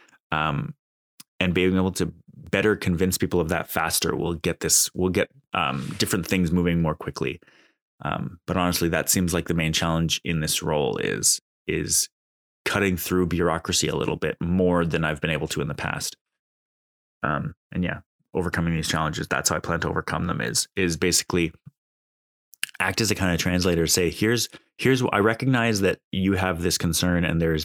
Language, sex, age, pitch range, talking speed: English, male, 20-39, 85-95 Hz, 185 wpm